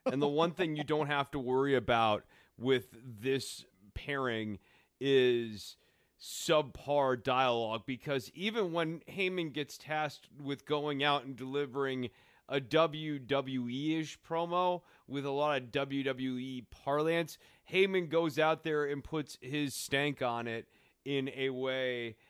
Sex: male